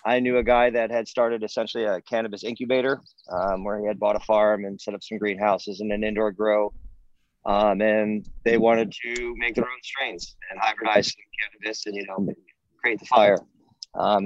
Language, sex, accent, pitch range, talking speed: English, male, American, 105-120 Hz, 195 wpm